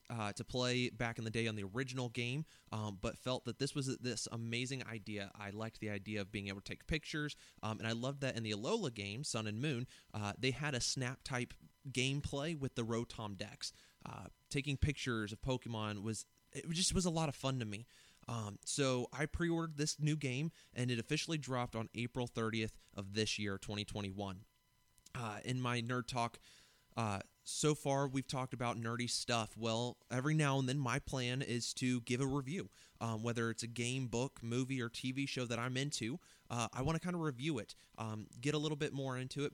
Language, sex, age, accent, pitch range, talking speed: English, male, 20-39, American, 115-135 Hz, 210 wpm